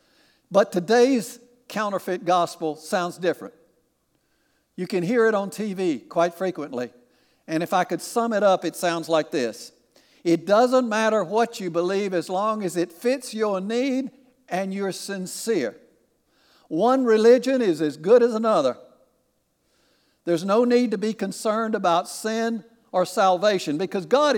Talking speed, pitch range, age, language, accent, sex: 150 wpm, 175-225 Hz, 60-79, English, American, male